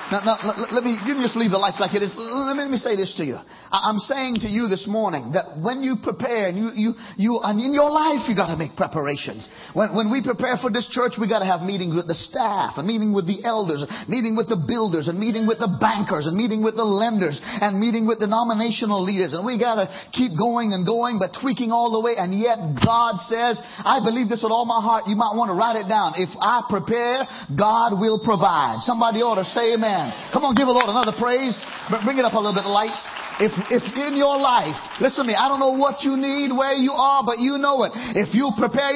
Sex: male